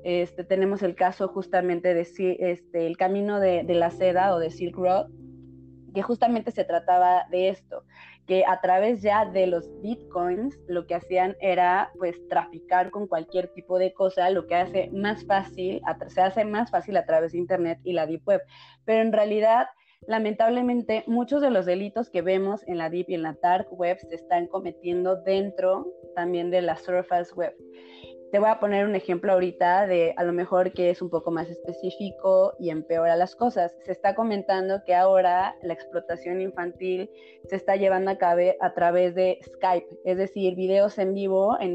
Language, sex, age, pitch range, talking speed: Spanish, female, 20-39, 175-195 Hz, 185 wpm